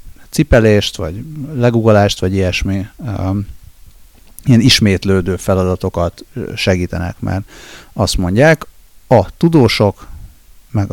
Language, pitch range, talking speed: Hungarian, 95-115 Hz, 90 wpm